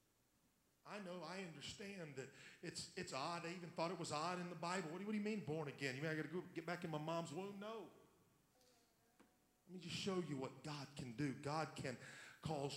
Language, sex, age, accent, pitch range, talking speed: English, male, 40-59, American, 135-200 Hz, 230 wpm